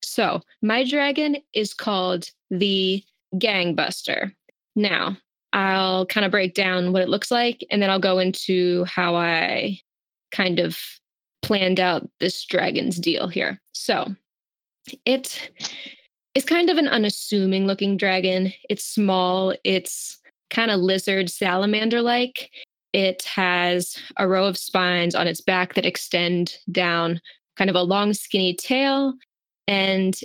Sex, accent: female, American